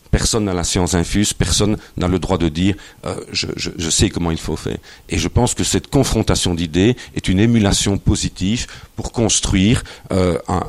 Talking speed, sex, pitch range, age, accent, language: 210 wpm, male, 90-110 Hz, 50-69, French, French